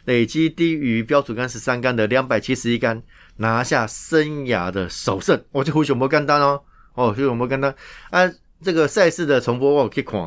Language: Chinese